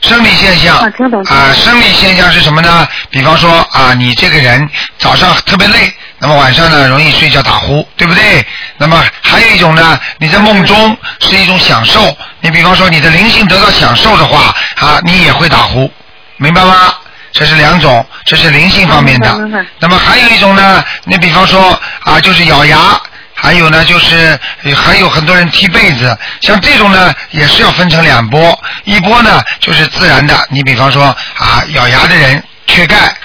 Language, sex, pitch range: Chinese, male, 150-185 Hz